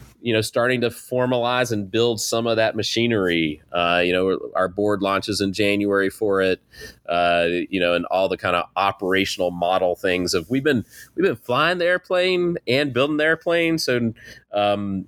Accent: American